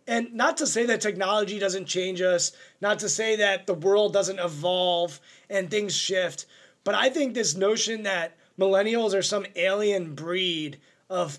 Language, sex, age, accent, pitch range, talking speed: English, male, 20-39, American, 175-210 Hz, 170 wpm